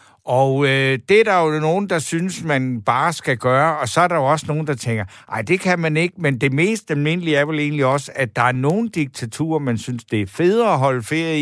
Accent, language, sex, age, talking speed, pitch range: native, Danish, male, 60-79, 250 wpm, 110-150 Hz